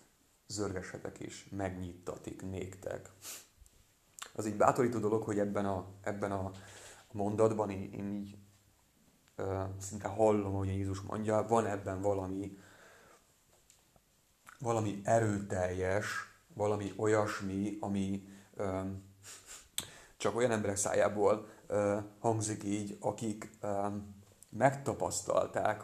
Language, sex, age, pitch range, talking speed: Hungarian, male, 30-49, 95-105 Hz, 100 wpm